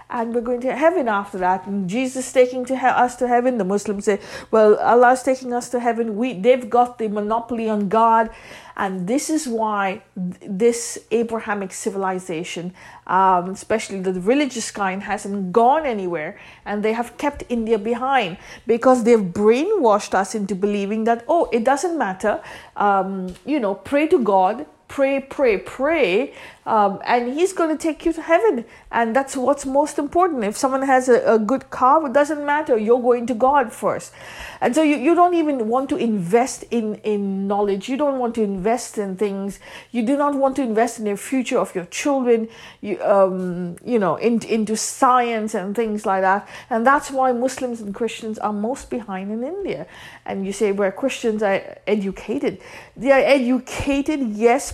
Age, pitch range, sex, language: 50-69, 205-260 Hz, female, English